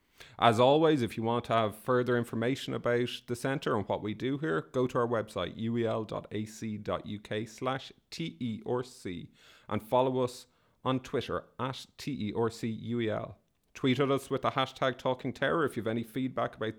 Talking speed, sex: 160 wpm, male